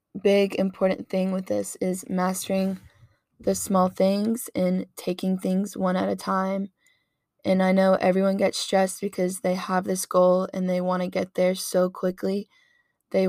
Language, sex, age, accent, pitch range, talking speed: English, female, 10-29, American, 180-195 Hz, 165 wpm